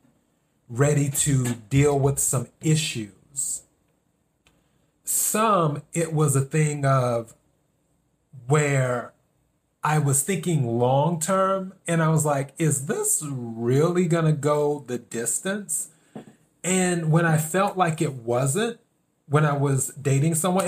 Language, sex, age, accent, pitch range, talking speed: English, male, 30-49, American, 130-160 Hz, 120 wpm